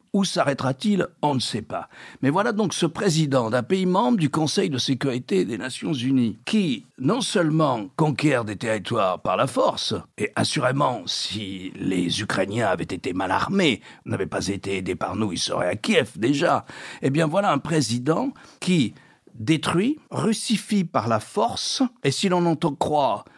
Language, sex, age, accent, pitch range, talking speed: French, male, 60-79, French, 125-185 Hz, 170 wpm